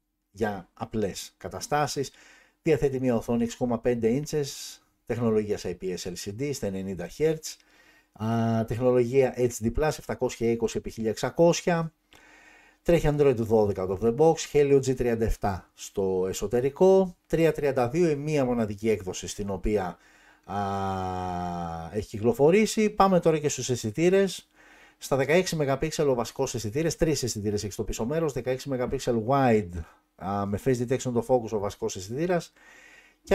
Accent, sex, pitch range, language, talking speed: native, male, 110-165 Hz, Greek, 125 wpm